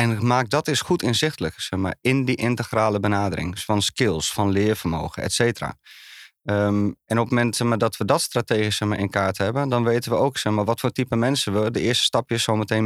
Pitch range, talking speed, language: 105-125 Hz, 195 wpm, Dutch